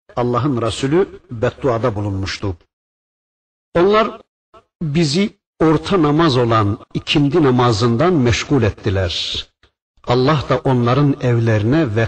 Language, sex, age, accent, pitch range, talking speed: Turkish, male, 60-79, native, 110-160 Hz, 90 wpm